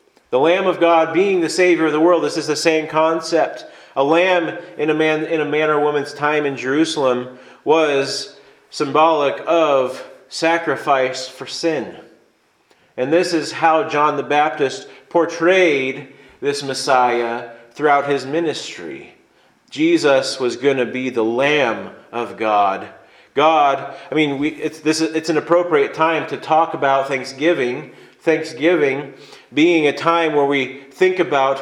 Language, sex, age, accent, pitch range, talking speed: English, male, 40-59, American, 135-170 Hz, 150 wpm